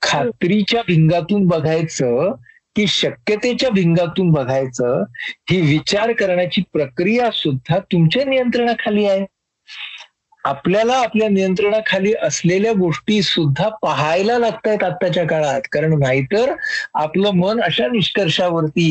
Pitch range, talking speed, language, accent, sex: 150-205 Hz, 100 wpm, Marathi, native, male